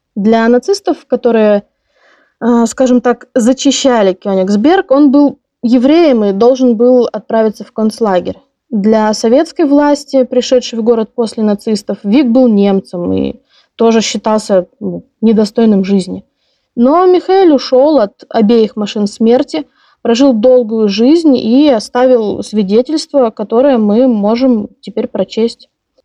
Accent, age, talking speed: native, 20-39, 115 wpm